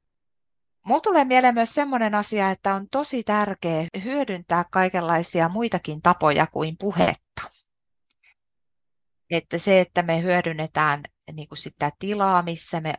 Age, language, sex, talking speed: 30-49, Finnish, female, 125 wpm